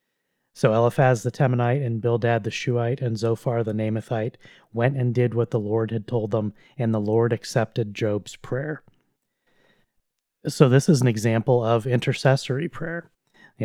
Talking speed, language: 165 wpm, English